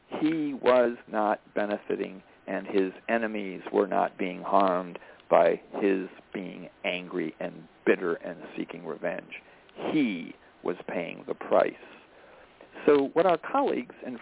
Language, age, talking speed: English, 50-69, 125 wpm